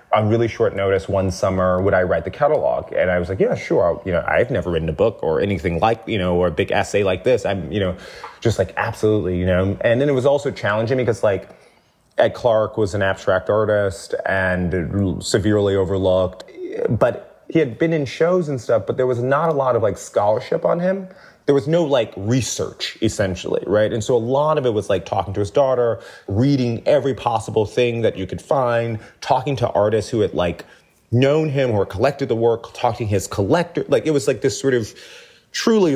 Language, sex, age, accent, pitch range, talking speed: English, male, 30-49, American, 100-140 Hz, 215 wpm